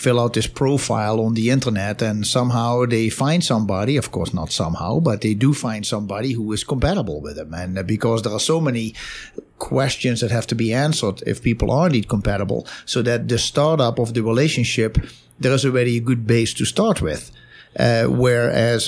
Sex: male